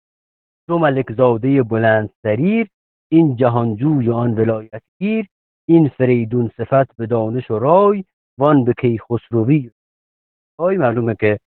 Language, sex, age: English, male, 50-69